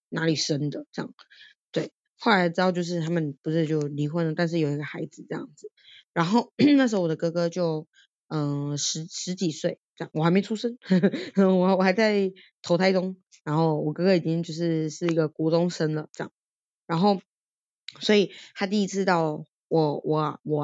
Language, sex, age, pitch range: Chinese, female, 20-39, 155-185 Hz